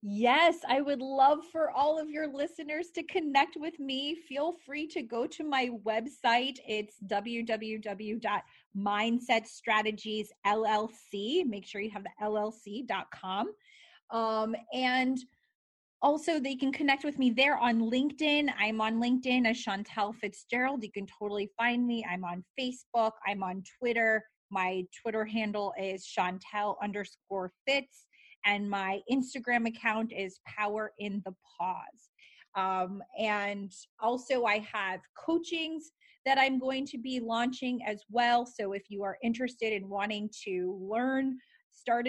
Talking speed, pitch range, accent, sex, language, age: 135 wpm, 205-255 Hz, American, female, English, 30-49